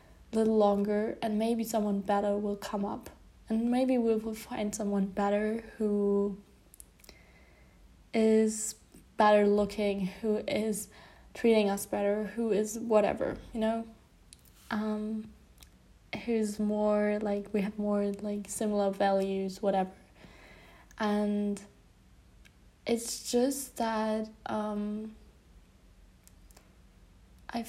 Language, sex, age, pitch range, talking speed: English, female, 10-29, 200-225 Hz, 100 wpm